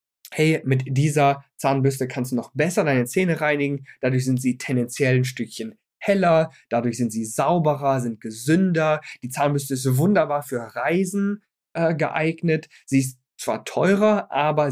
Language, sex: German, male